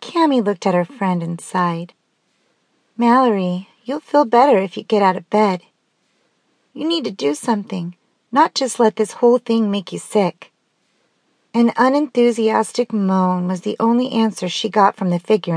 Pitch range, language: 185-235 Hz, English